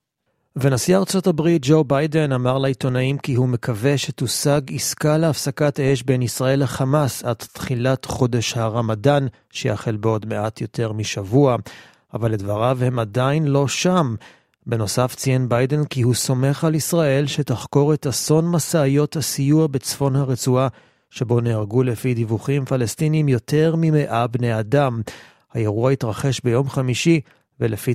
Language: Hebrew